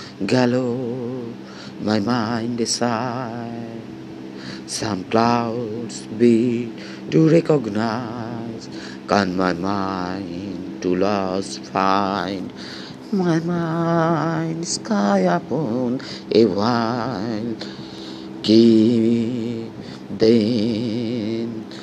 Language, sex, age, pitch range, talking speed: Bengali, male, 50-69, 90-120 Hz, 65 wpm